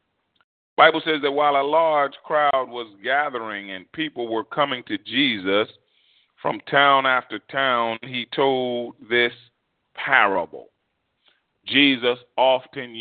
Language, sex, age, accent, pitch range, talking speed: English, male, 40-59, American, 120-155 Hz, 120 wpm